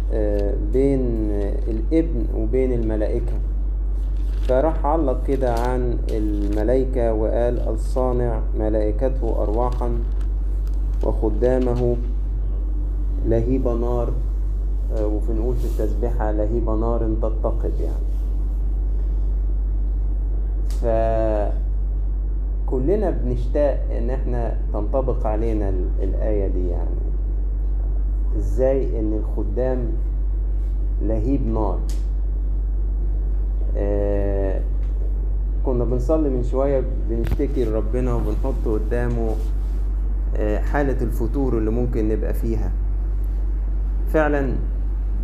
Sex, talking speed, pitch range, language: male, 75 wpm, 105-125 Hz, Arabic